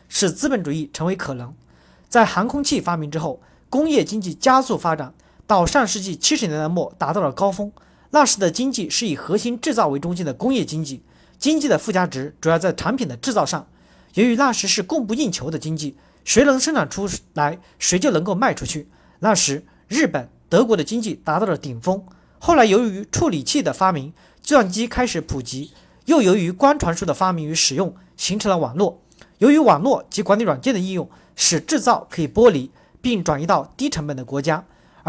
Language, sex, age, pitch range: Chinese, male, 40-59, 155-230 Hz